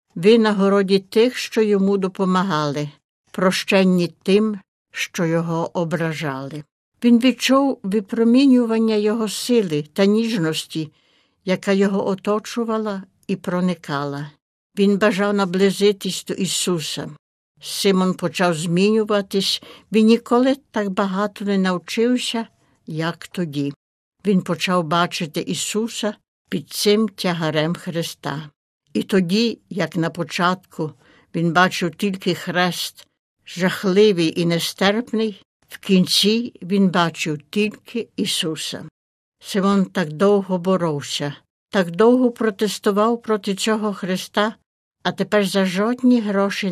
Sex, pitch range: female, 170-210 Hz